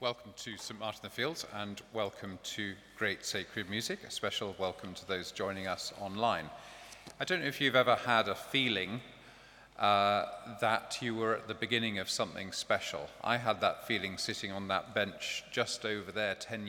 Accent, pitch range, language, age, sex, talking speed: British, 90-110 Hz, English, 40-59, male, 185 wpm